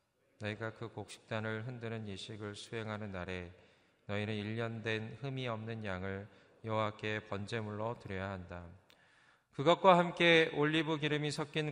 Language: Korean